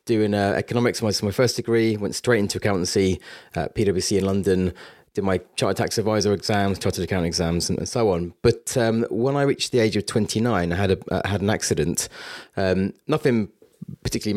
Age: 30-49